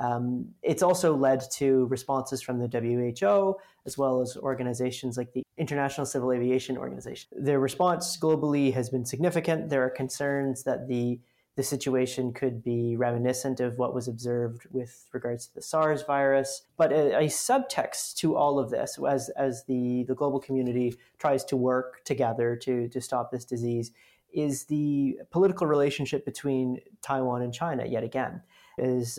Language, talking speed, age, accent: English, 160 wpm, 30-49, American